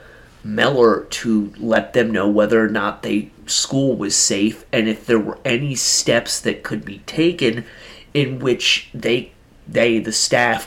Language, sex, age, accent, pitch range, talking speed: English, male, 30-49, American, 110-135 Hz, 155 wpm